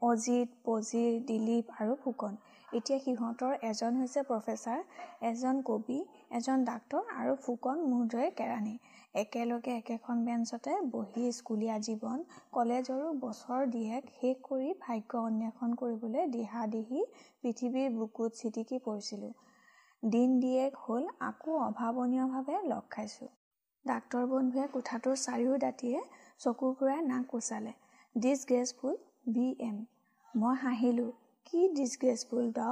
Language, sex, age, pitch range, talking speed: Hindi, female, 30-49, 230-265 Hz, 100 wpm